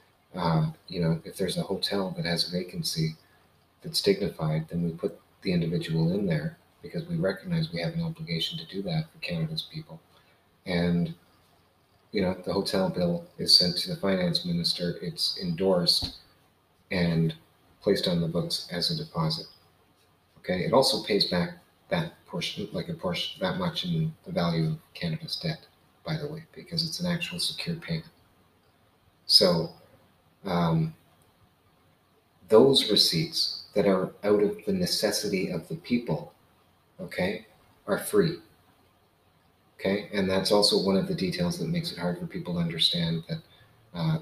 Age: 30-49